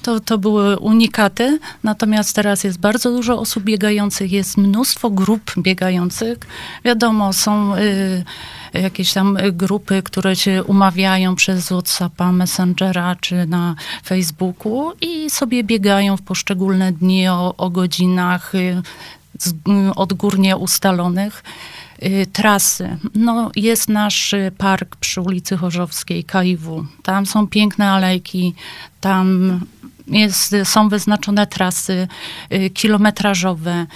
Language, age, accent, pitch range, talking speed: Polish, 30-49, native, 180-205 Hz, 100 wpm